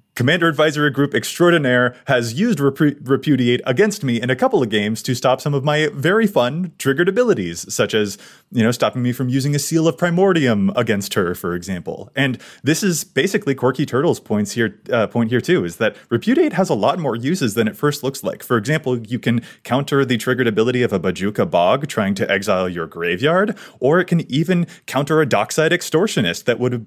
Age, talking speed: 30-49, 205 wpm